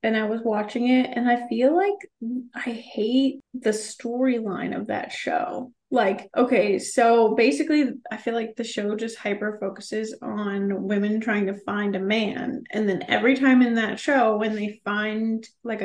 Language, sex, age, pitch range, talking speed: English, female, 20-39, 215-270 Hz, 170 wpm